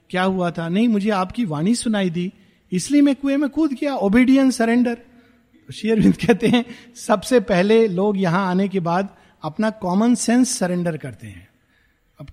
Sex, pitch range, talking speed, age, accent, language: male, 180-255 Hz, 165 wpm, 50-69, native, Hindi